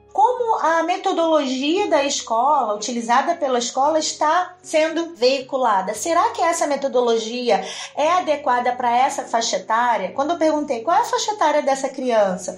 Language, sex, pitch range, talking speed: Portuguese, female, 240-315 Hz, 150 wpm